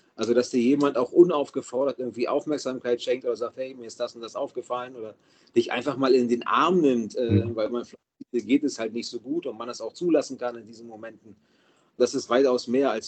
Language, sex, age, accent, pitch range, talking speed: German, male, 40-59, German, 120-145 Hz, 230 wpm